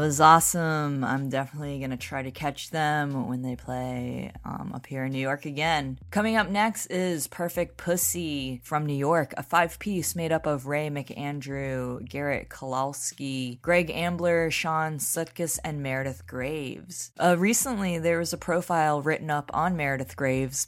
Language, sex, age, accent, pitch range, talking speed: English, female, 20-39, American, 135-160 Hz, 165 wpm